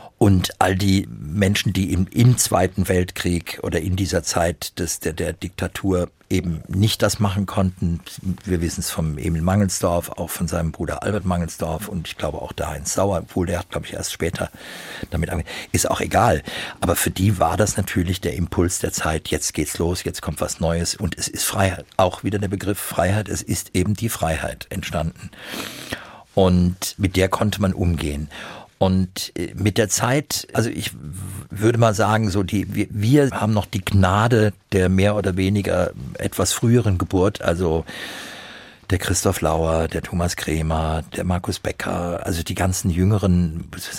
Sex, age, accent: male, 50-69, German